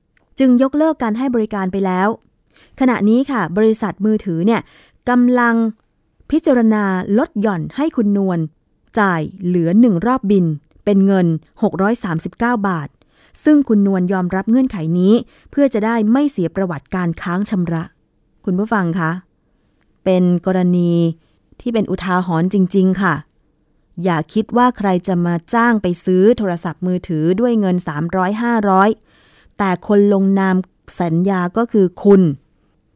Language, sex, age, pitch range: Thai, female, 20-39, 175-220 Hz